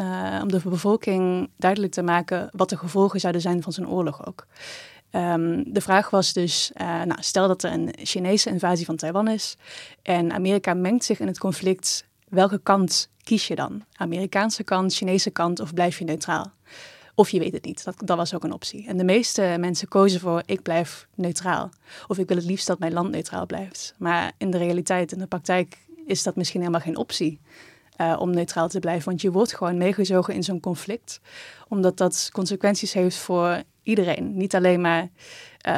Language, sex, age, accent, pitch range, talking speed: Dutch, female, 20-39, Dutch, 175-195 Hz, 195 wpm